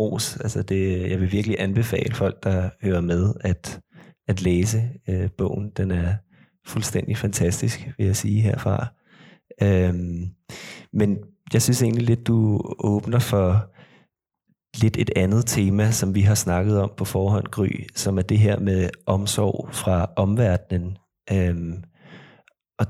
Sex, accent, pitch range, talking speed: male, native, 90-110 Hz, 130 wpm